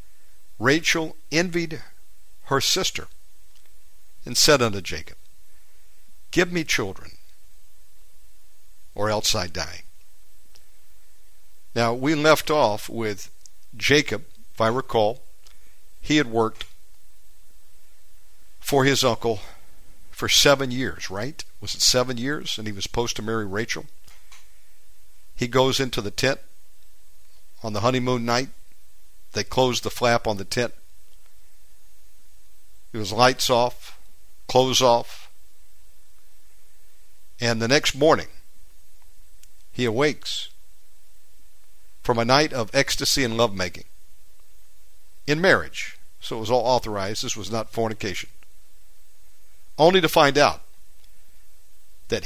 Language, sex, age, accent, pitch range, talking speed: English, male, 60-79, American, 80-120 Hz, 110 wpm